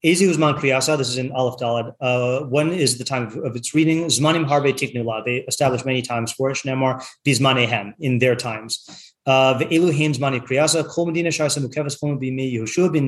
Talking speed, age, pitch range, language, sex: 195 wpm, 30-49, 125-155 Hz, English, male